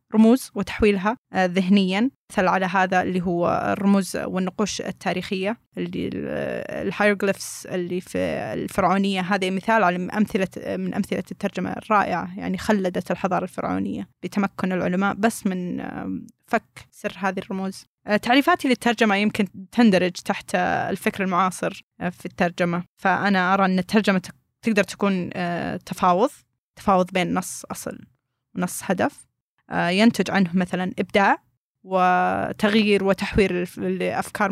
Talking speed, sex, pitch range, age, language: 115 wpm, female, 185-210 Hz, 20-39, Arabic